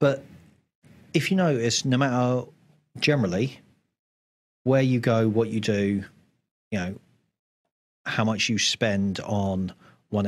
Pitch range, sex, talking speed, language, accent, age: 95-130 Hz, male, 125 wpm, English, British, 30-49